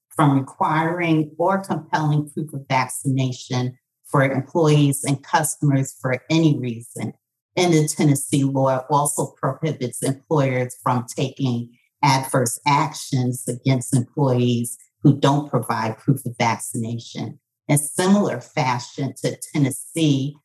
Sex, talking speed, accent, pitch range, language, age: female, 110 wpm, American, 125-145 Hz, English, 40-59